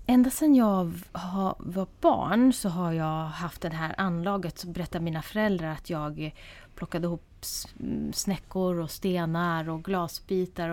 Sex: female